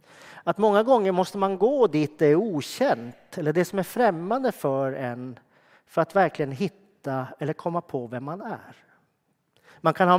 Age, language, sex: 40-59, Swedish, male